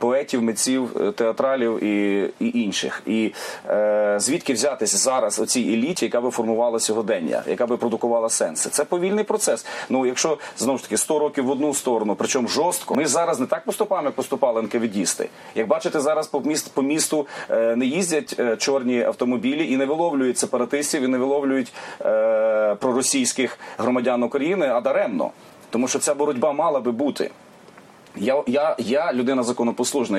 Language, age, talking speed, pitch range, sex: English, 30-49, 155 wpm, 115-145 Hz, male